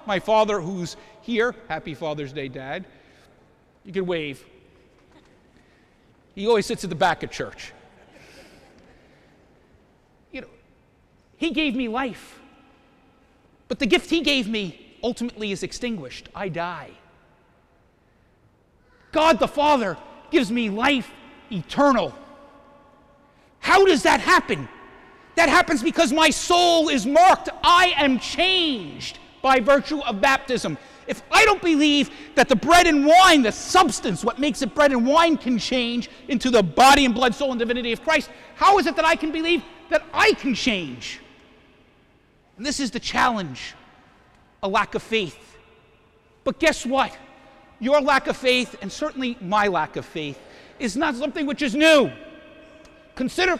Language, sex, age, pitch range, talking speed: English, male, 50-69, 230-315 Hz, 145 wpm